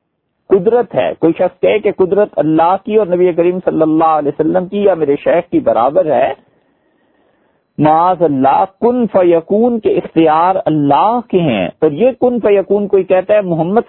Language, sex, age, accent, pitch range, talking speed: English, male, 50-69, Indian, 140-205 Hz, 170 wpm